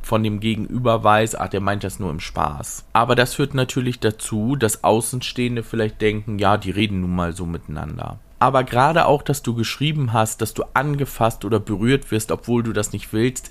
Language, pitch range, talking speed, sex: German, 105-130 Hz, 200 wpm, male